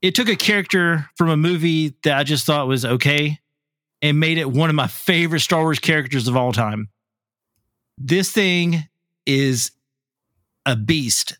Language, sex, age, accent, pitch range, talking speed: English, male, 30-49, American, 130-170 Hz, 165 wpm